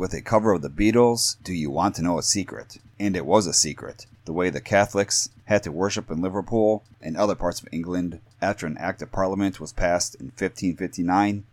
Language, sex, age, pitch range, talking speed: English, male, 30-49, 90-110 Hz, 215 wpm